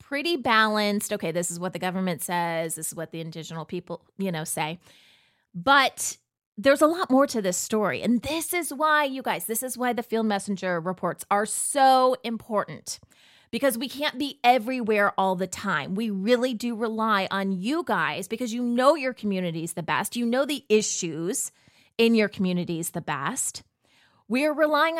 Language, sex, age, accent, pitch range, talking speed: English, female, 30-49, American, 190-265 Hz, 180 wpm